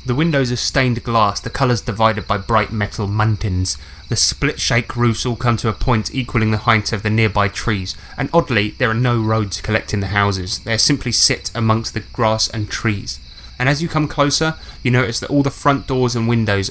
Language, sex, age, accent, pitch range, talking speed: English, male, 10-29, British, 100-130 Hz, 215 wpm